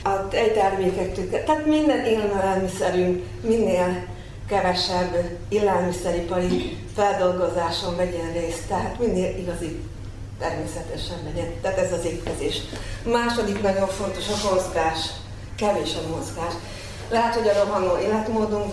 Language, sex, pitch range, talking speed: Hungarian, female, 175-220 Hz, 105 wpm